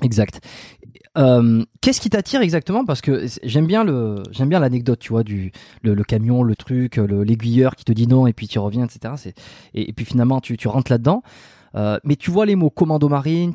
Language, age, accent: French, 20-39, French